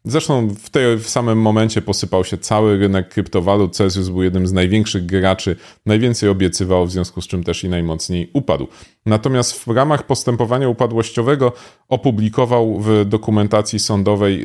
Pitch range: 90-120 Hz